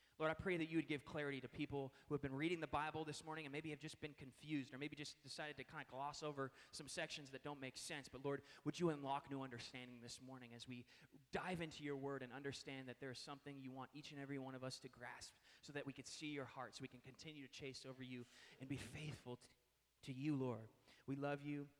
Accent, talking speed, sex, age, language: American, 260 wpm, male, 20-39, English